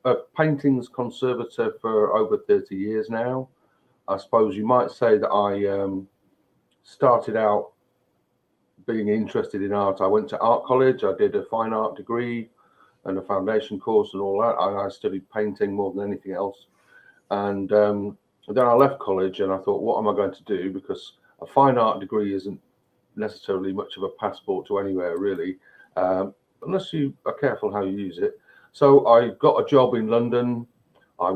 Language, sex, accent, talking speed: English, male, British, 180 wpm